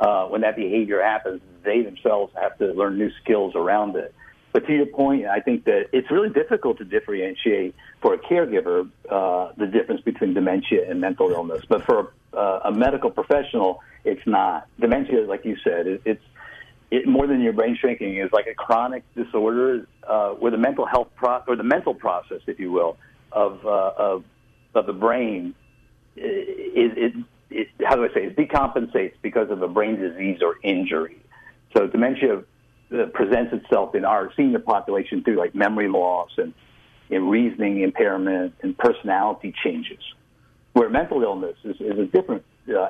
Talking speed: 175 wpm